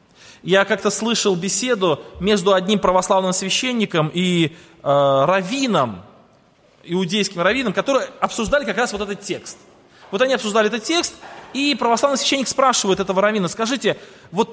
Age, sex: 20-39, male